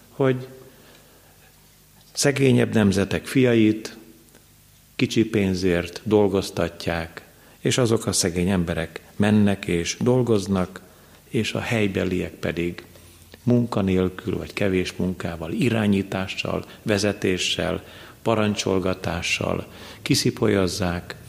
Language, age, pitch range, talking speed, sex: Hungarian, 50-69, 90-110 Hz, 75 wpm, male